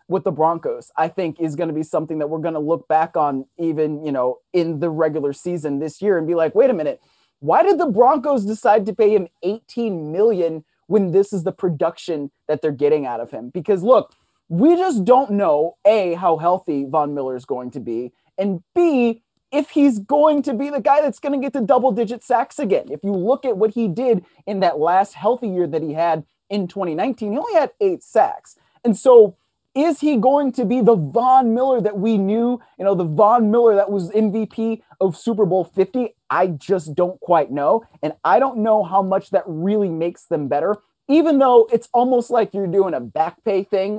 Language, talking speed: English, 220 wpm